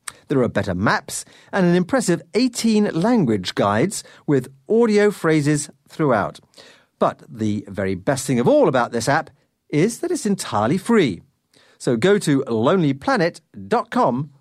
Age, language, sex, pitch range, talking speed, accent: 40-59, English, male, 130-210 Hz, 135 wpm, British